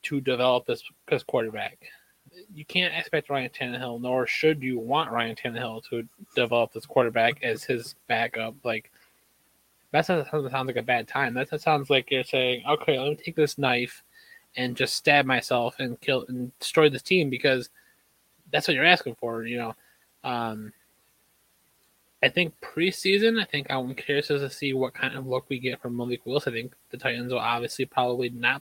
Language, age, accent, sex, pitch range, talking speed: English, 20-39, American, male, 120-150 Hz, 185 wpm